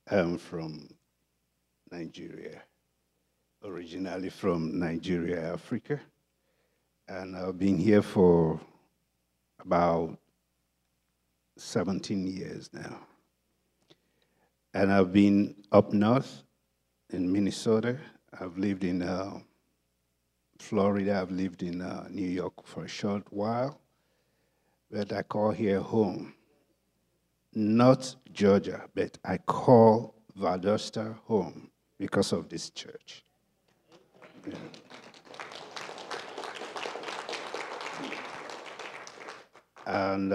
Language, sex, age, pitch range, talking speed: English, male, 60-79, 80-105 Hz, 80 wpm